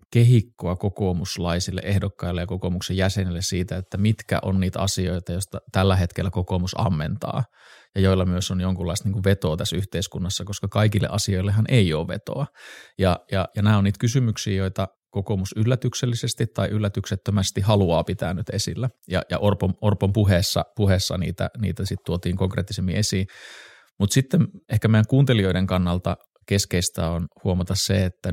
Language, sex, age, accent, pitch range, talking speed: Finnish, male, 20-39, native, 95-110 Hz, 150 wpm